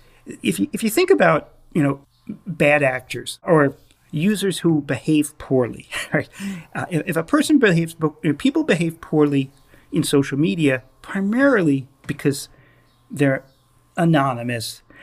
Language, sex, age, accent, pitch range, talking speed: German, male, 40-59, American, 135-180 Hz, 130 wpm